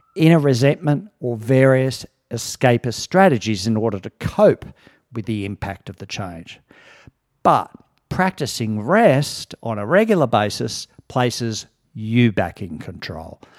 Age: 50-69